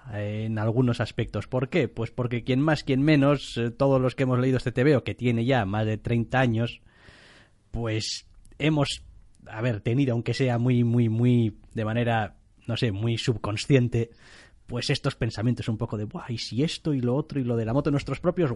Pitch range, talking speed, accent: 110-140 Hz, 195 wpm, Spanish